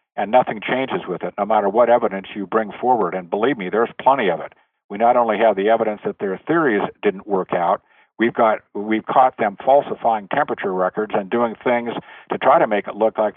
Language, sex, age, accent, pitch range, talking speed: English, male, 50-69, American, 105-125 Hz, 220 wpm